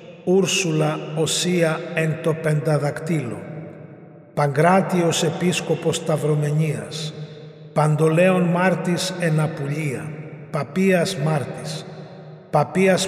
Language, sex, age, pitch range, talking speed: Greek, male, 50-69, 155-175 Hz, 70 wpm